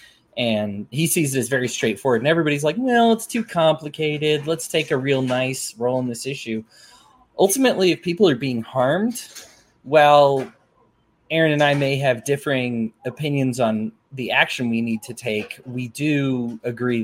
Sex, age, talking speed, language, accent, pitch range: male, 20-39, 165 wpm, English, American, 110-145 Hz